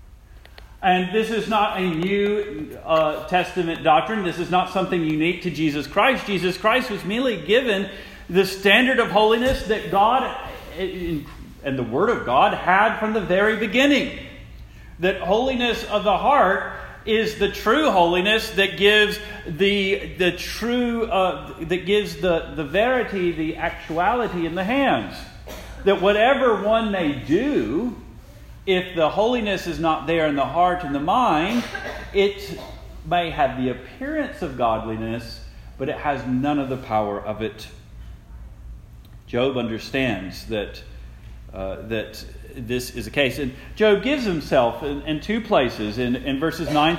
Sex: male